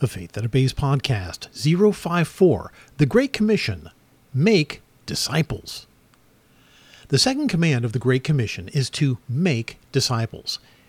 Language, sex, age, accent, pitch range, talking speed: English, male, 50-69, American, 130-205 Hz, 120 wpm